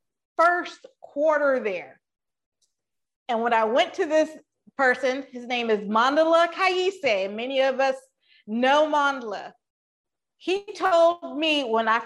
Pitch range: 245-300 Hz